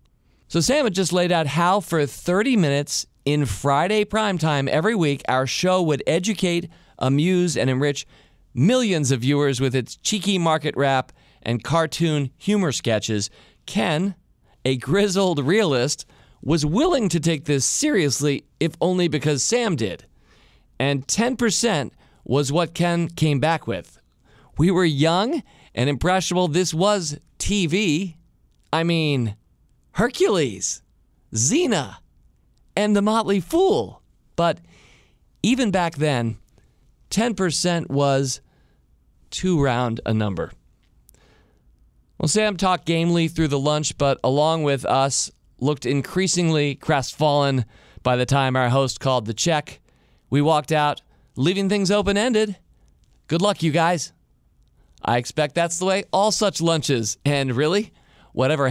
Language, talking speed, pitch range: English, 130 wpm, 135-185 Hz